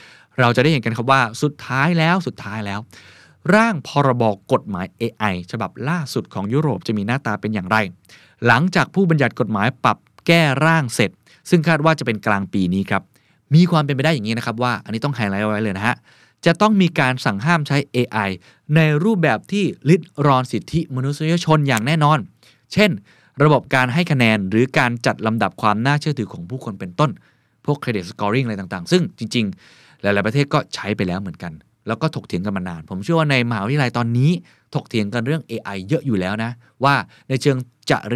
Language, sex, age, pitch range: Thai, male, 20-39, 110-150 Hz